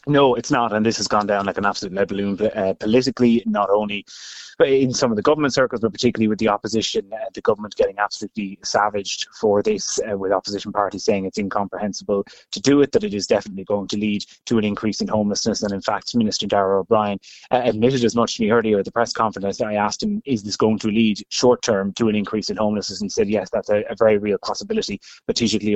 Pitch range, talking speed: 105-120 Hz, 235 wpm